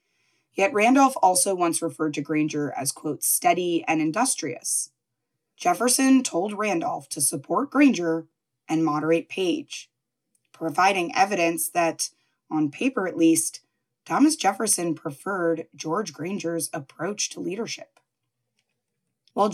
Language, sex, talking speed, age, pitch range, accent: English, female, 115 wpm, 20-39, 165-240 Hz, American